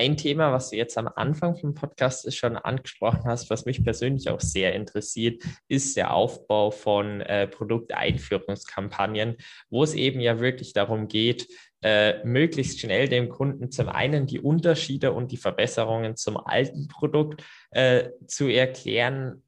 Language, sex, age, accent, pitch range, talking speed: German, male, 20-39, German, 110-135 Hz, 155 wpm